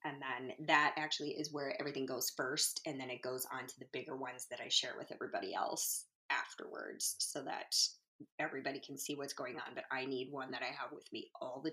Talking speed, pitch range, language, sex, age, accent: 225 wpm, 145-225 Hz, English, female, 20-39, American